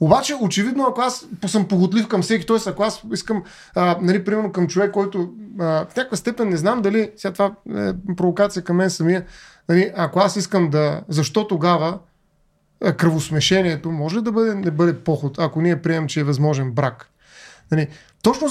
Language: Bulgarian